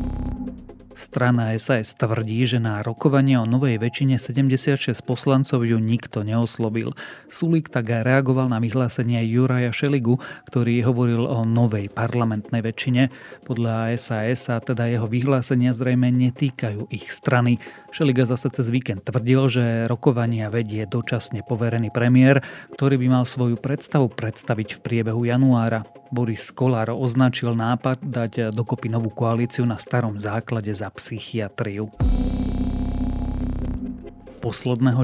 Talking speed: 125 wpm